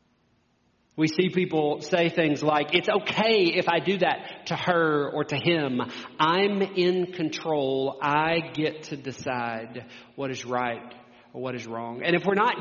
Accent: American